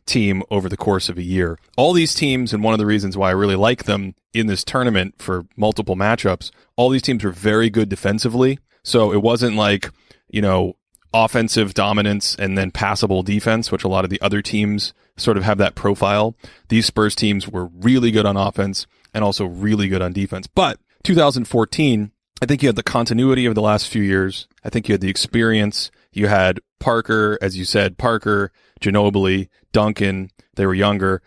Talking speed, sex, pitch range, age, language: 195 wpm, male, 100-115 Hz, 30-49, English